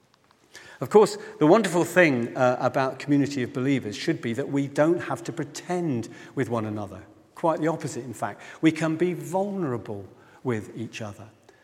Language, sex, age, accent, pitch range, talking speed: English, male, 50-69, British, 125-165 Hz, 170 wpm